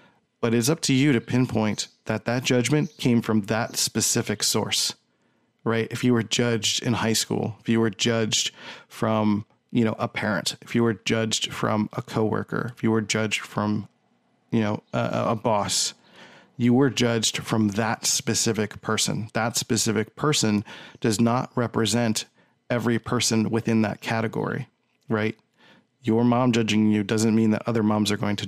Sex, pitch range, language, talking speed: male, 110-120 Hz, English, 170 wpm